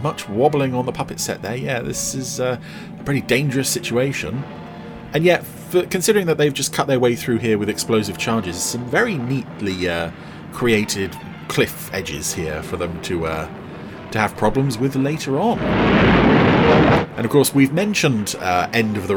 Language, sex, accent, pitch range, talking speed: English, male, British, 105-135 Hz, 175 wpm